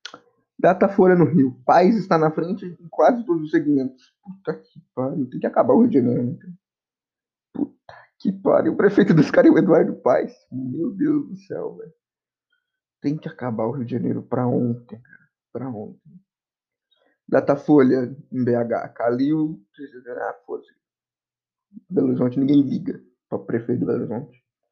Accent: Brazilian